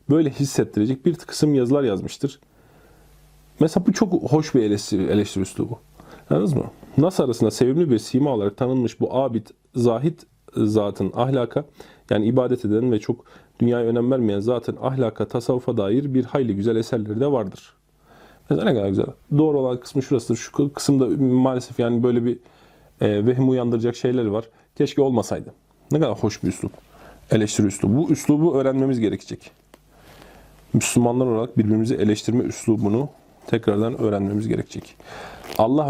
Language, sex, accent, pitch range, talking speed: Turkish, male, native, 110-145 Hz, 145 wpm